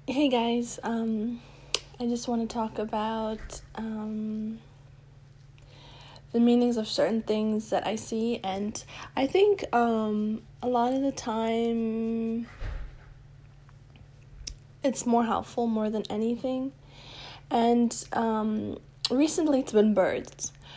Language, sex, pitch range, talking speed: English, female, 140-230 Hz, 115 wpm